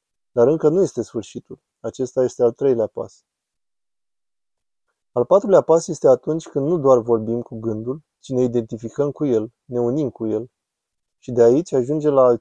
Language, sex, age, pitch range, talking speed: Romanian, male, 20-39, 115-140 Hz, 175 wpm